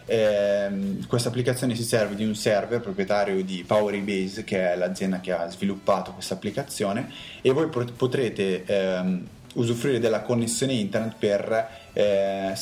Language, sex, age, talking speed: Italian, male, 20-39, 140 wpm